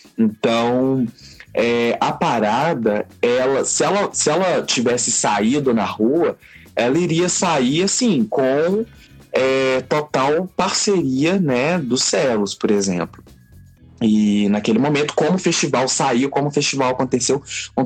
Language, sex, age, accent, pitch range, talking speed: Portuguese, male, 20-39, Brazilian, 105-135 Hz, 115 wpm